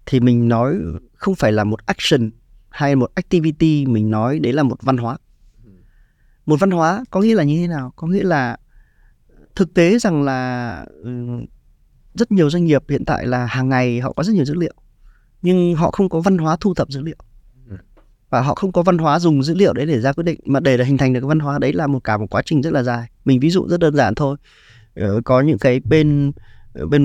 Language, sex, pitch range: Vietnamese, male, 125-160 Hz